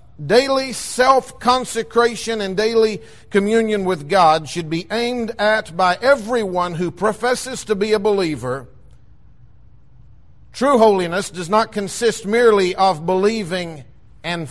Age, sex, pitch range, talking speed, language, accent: 50-69, male, 155-215 Hz, 115 wpm, English, American